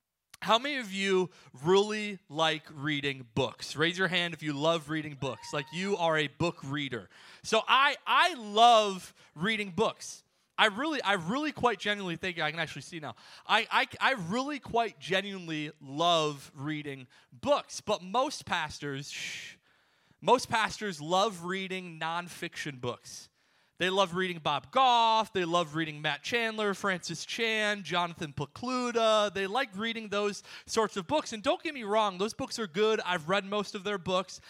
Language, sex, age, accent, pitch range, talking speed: English, male, 30-49, American, 160-220 Hz, 165 wpm